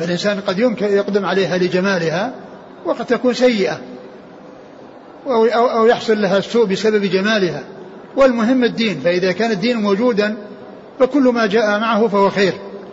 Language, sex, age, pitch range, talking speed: Arabic, male, 60-79, 180-215 Hz, 120 wpm